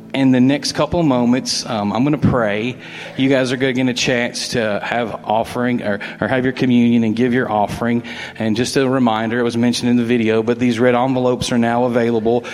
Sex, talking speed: male, 230 wpm